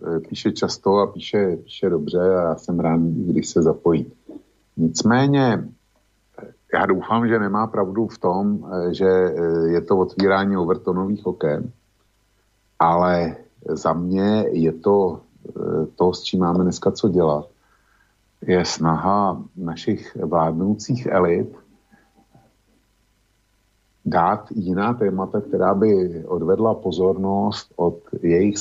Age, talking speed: 50-69, 110 wpm